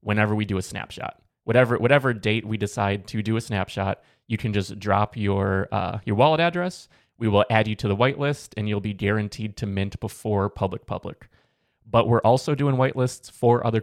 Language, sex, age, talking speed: English, male, 20-39, 200 wpm